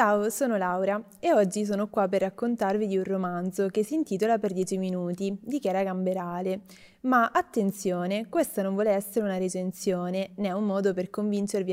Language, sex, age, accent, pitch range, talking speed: Italian, female, 20-39, native, 185-210 Hz, 175 wpm